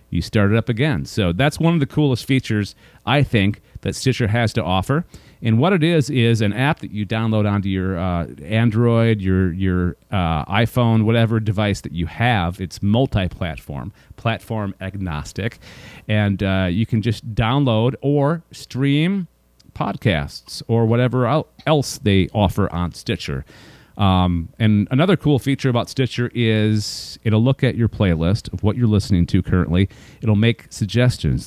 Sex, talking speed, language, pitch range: male, 160 wpm, English, 100-125 Hz